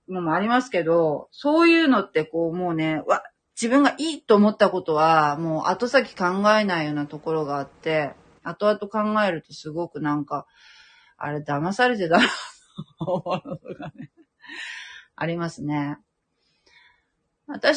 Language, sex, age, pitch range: Japanese, female, 30-49, 165-250 Hz